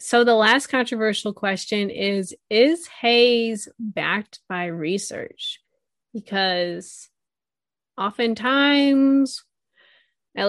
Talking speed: 80 wpm